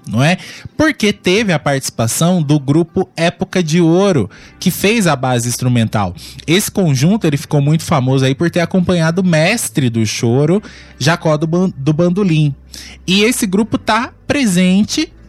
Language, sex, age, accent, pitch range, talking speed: Portuguese, male, 20-39, Brazilian, 130-175 Hz, 155 wpm